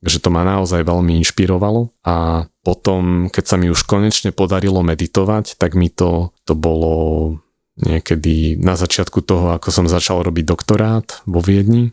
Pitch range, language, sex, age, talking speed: 85-95 Hz, Slovak, male, 30-49, 155 wpm